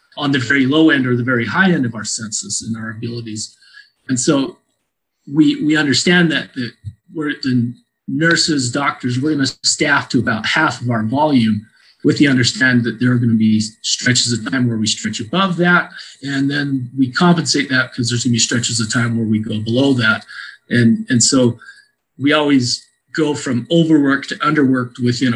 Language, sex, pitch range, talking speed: English, male, 115-145 Hz, 195 wpm